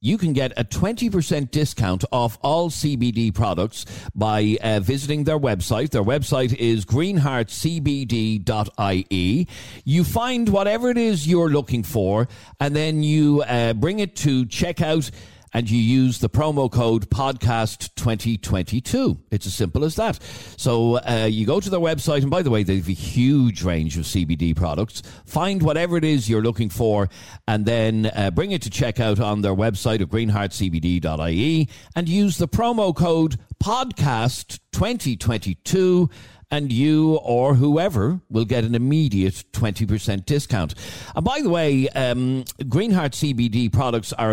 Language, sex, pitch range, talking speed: English, male, 105-150 Hz, 150 wpm